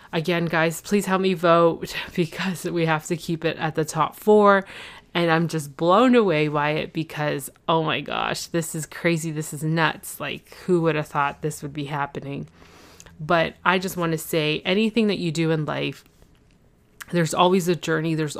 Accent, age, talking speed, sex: American, 20-39, 190 wpm, female